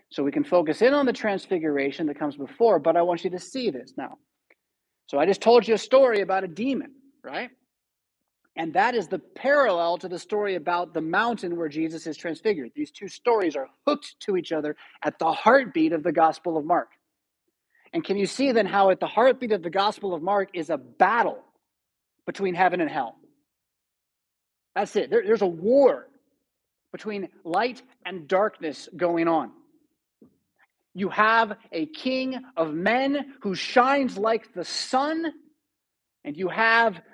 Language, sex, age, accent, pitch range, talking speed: English, male, 30-49, American, 180-265 Hz, 175 wpm